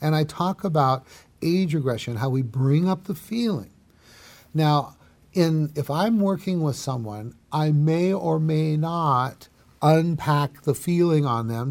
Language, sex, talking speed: English, male, 150 wpm